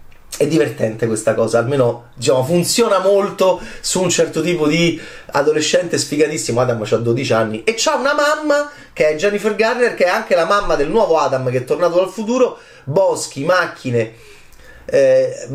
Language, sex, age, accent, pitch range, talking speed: Italian, male, 30-49, native, 120-180 Hz, 165 wpm